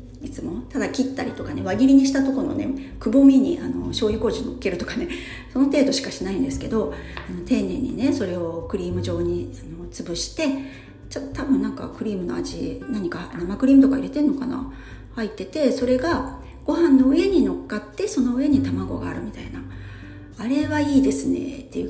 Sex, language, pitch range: female, Japanese, 175-275 Hz